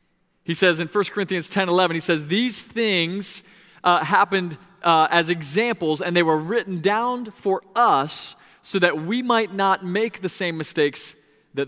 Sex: male